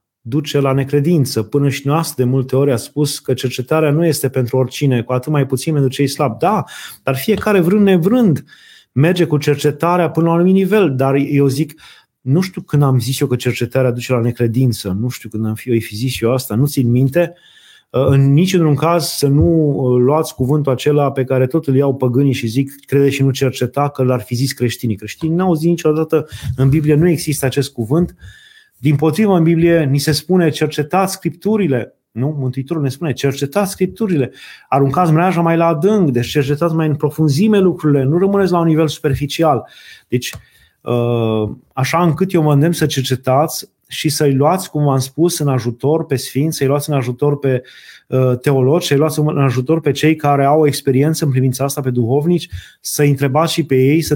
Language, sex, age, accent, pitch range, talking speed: Romanian, male, 30-49, native, 130-160 Hz, 195 wpm